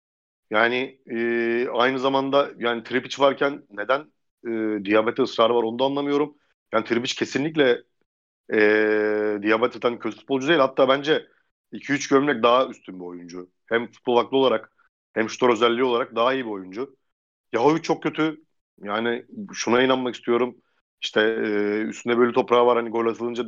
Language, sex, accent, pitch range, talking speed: Turkish, male, native, 110-130 Hz, 150 wpm